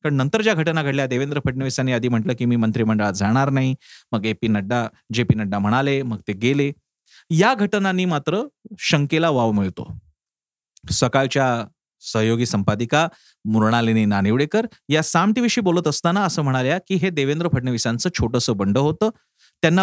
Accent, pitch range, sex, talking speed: native, 125-175 Hz, male, 105 wpm